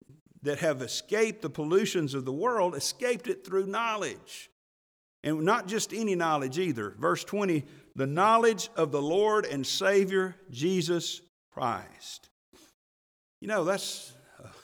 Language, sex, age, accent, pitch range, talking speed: English, male, 50-69, American, 120-175 Hz, 130 wpm